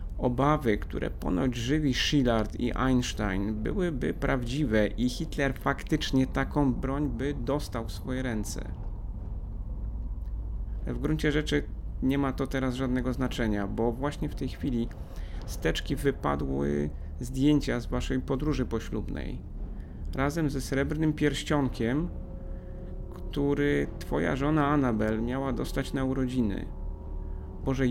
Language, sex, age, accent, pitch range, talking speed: Polish, male, 30-49, native, 85-140 Hz, 115 wpm